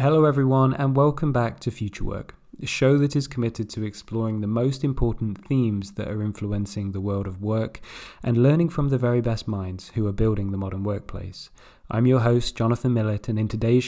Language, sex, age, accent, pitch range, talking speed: English, male, 20-39, British, 105-125 Hz, 205 wpm